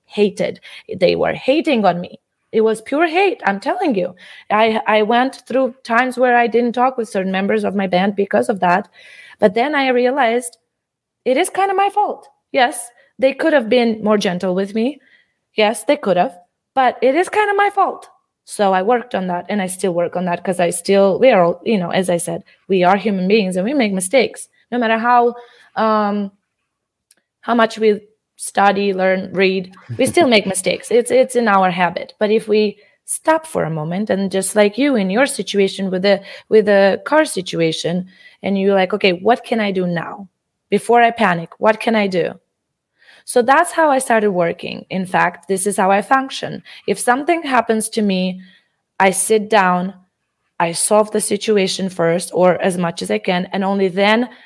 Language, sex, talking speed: English, female, 200 wpm